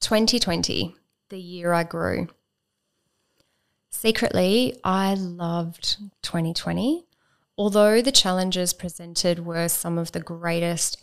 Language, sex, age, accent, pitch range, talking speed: English, female, 10-29, Australian, 175-210 Hz, 100 wpm